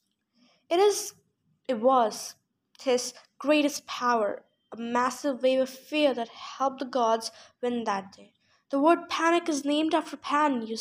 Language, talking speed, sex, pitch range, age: English, 145 wpm, female, 245-315 Hz, 10-29